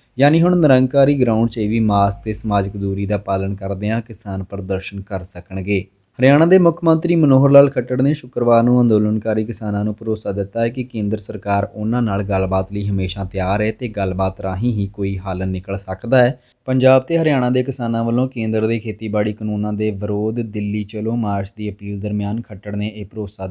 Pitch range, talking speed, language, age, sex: 100-120 Hz, 190 wpm, Punjabi, 20-39, male